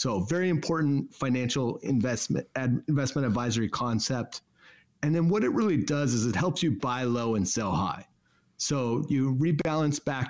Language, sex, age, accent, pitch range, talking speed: English, male, 30-49, American, 120-150 Hz, 165 wpm